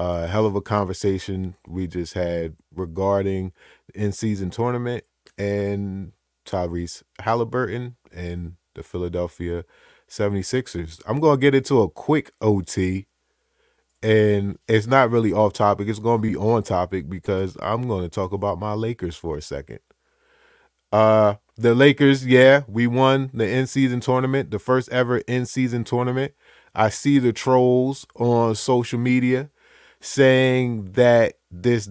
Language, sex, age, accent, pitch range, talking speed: English, male, 20-39, American, 100-130 Hz, 135 wpm